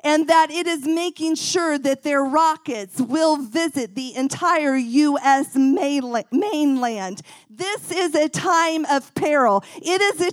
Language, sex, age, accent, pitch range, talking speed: English, female, 40-59, American, 270-340 Hz, 140 wpm